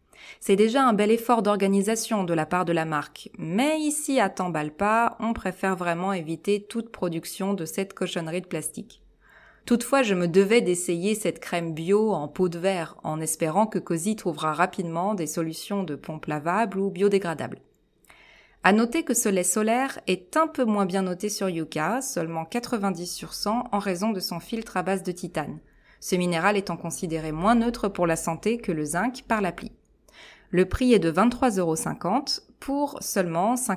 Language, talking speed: French, 180 wpm